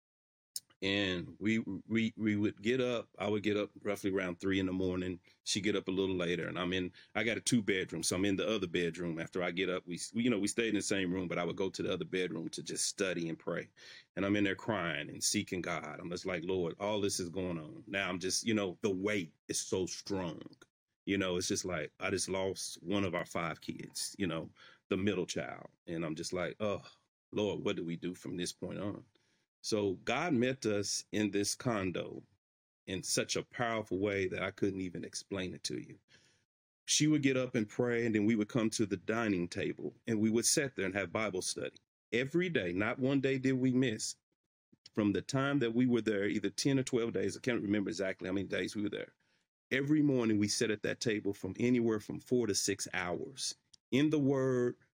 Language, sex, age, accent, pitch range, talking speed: English, male, 30-49, American, 95-115 Hz, 235 wpm